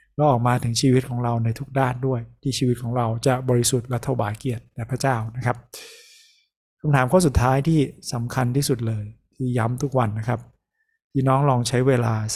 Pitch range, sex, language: 115-130 Hz, male, Thai